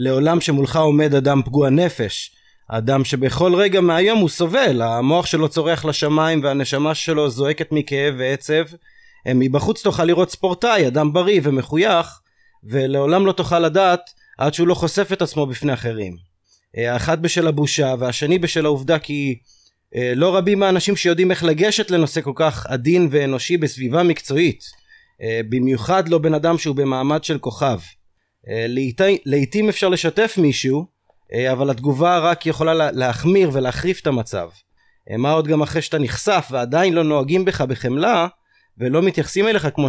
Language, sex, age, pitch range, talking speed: Hebrew, male, 30-49, 135-175 Hz, 150 wpm